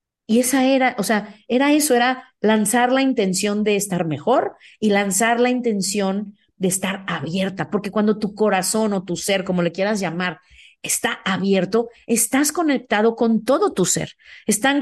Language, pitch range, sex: Spanish, 195-265 Hz, female